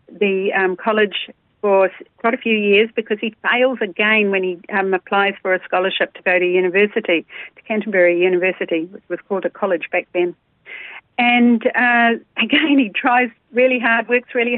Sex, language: female, English